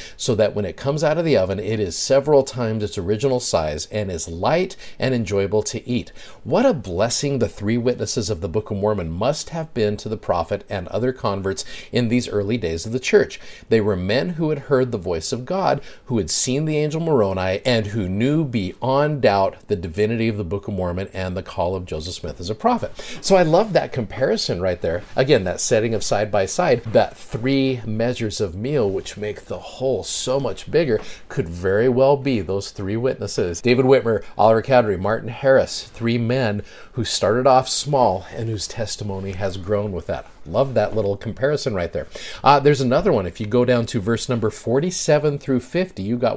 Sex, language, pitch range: male, English, 105-130 Hz